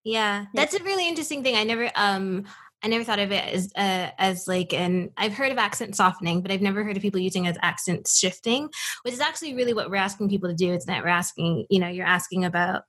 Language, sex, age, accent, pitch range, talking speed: English, female, 20-39, American, 185-230 Hz, 250 wpm